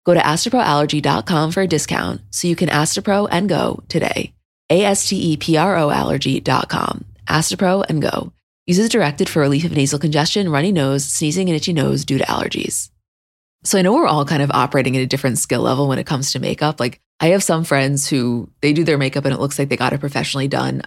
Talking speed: 200 wpm